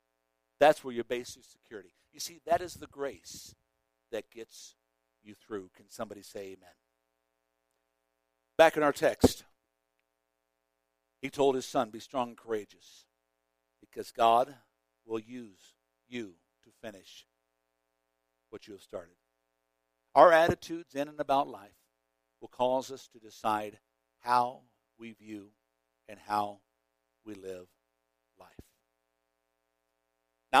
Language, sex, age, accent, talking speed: English, male, 60-79, American, 125 wpm